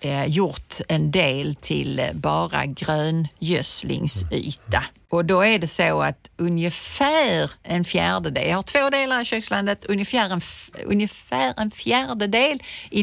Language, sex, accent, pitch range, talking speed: Swedish, female, native, 155-210 Hz, 135 wpm